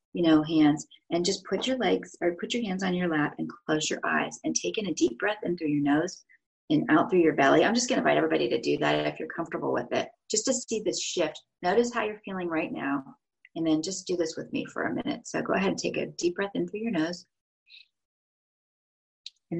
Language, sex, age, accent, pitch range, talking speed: English, female, 40-59, American, 165-240 Hz, 250 wpm